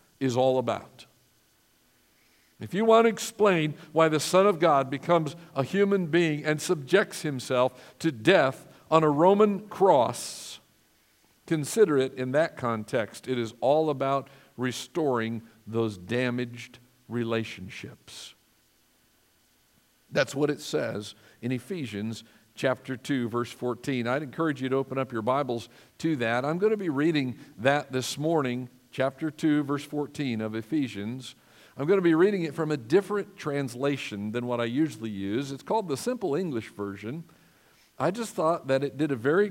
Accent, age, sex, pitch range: American, 50-69, male, 120-165 Hz